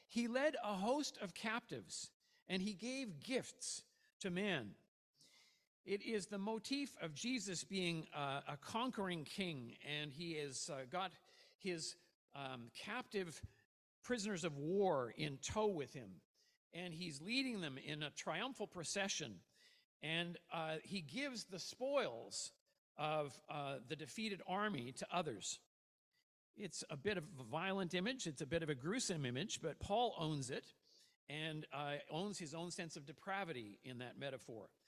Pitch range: 140-210 Hz